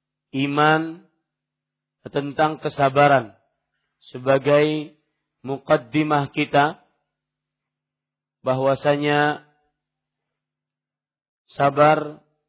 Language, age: Malay, 50-69